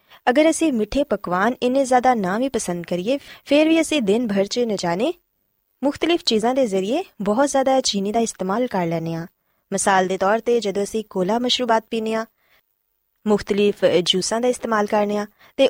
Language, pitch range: Punjabi, 190-270 Hz